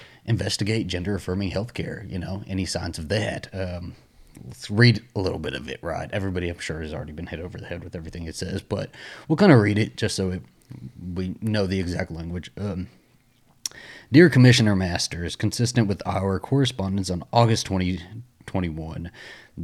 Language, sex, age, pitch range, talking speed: English, male, 30-49, 85-105 Hz, 175 wpm